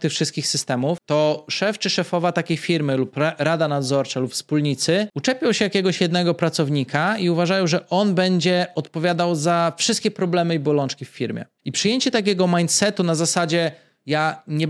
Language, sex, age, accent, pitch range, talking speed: Polish, male, 20-39, native, 150-185 Hz, 165 wpm